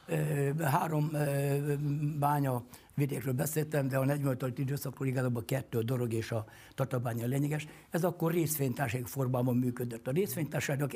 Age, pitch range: 60-79, 125-150 Hz